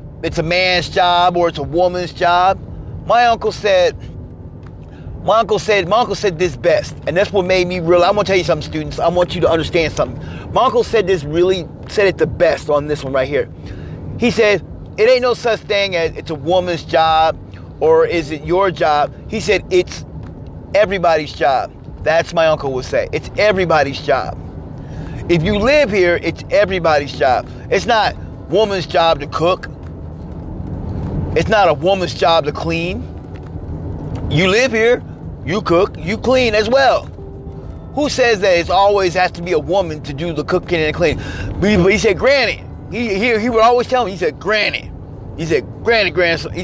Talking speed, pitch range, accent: 185 wpm, 160-215 Hz, American